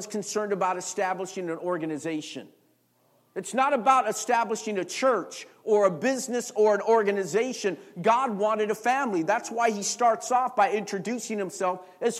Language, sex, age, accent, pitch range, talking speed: English, male, 50-69, American, 195-250 Hz, 150 wpm